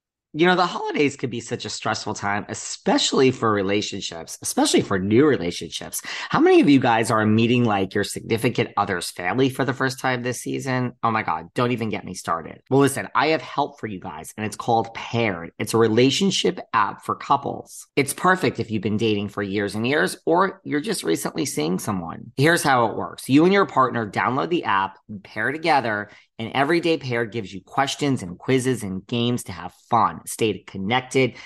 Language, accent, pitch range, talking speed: English, American, 100-135 Hz, 200 wpm